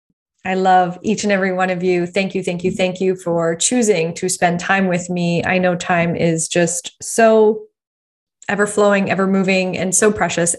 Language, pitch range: English, 180-210 Hz